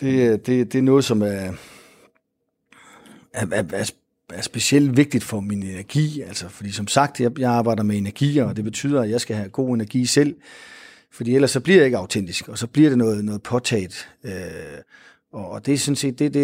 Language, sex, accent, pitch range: Danish, male, native, 105-135 Hz